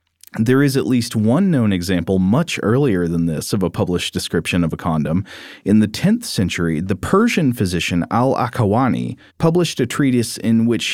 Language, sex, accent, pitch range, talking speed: English, male, American, 95-125 Hz, 170 wpm